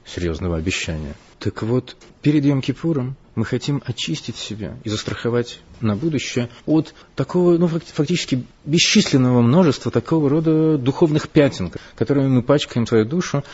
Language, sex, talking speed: Russian, male, 130 wpm